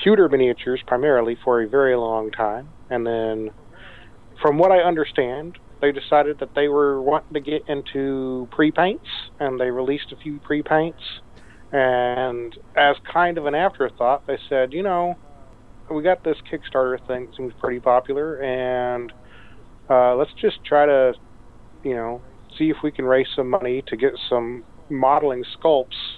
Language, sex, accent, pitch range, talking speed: English, male, American, 115-145 Hz, 155 wpm